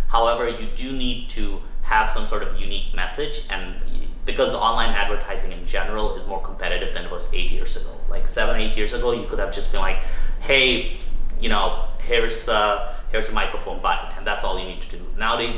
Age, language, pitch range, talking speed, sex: 30-49, English, 100-125 Hz, 210 wpm, male